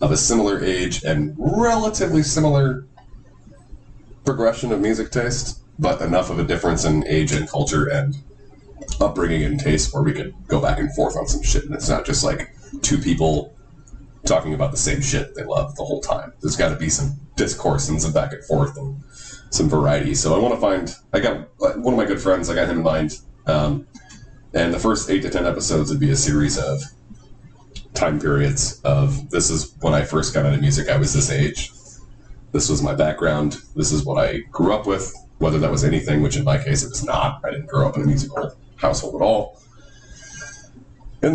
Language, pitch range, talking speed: English, 95-145 Hz, 210 wpm